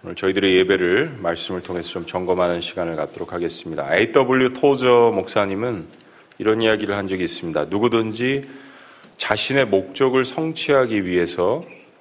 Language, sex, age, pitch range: Korean, male, 40-59, 100-130 Hz